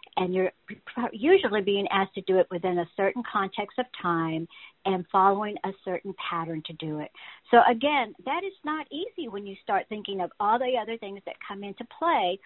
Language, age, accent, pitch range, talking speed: English, 60-79, American, 175-235 Hz, 195 wpm